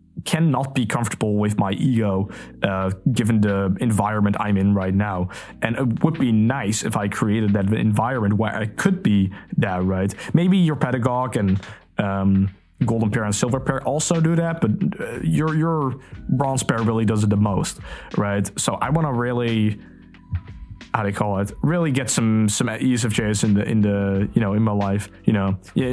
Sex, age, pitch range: male, 20-39, 100-130 Hz